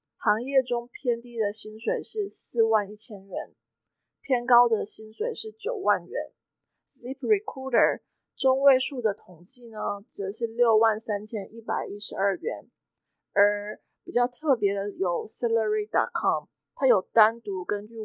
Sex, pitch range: female, 210-280 Hz